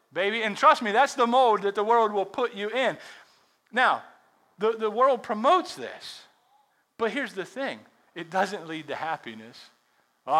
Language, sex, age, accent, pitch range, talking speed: English, male, 40-59, American, 150-220 Hz, 175 wpm